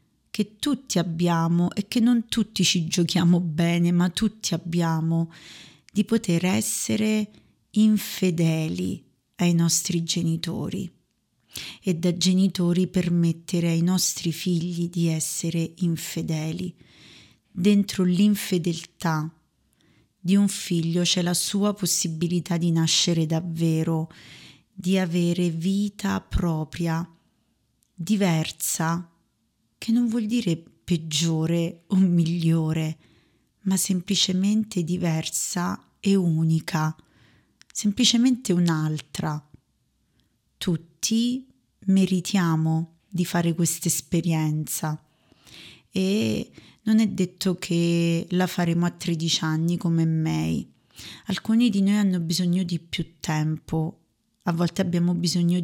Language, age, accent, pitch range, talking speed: Italian, 30-49, native, 160-185 Hz, 100 wpm